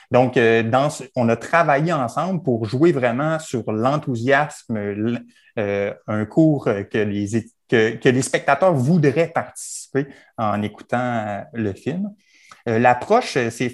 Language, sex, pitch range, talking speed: French, male, 115-155 Hz, 135 wpm